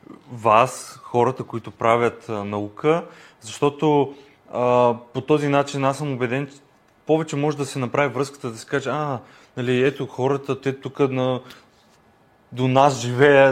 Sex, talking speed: male, 150 wpm